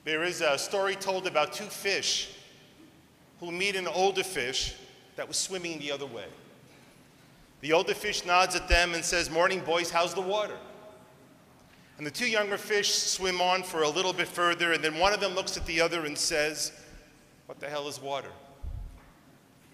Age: 40-59